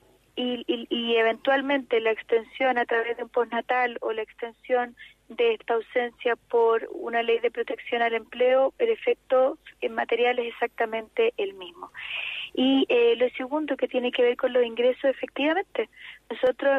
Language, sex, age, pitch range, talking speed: Spanish, female, 30-49, 250-295 Hz, 155 wpm